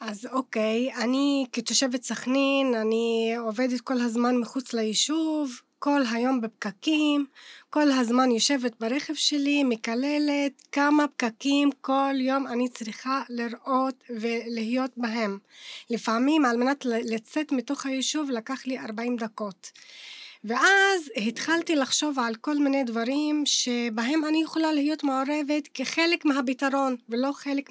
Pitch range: 240-300 Hz